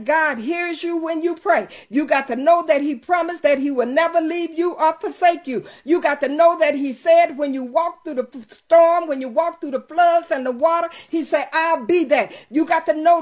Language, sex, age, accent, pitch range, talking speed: English, female, 50-69, American, 295-335 Hz, 240 wpm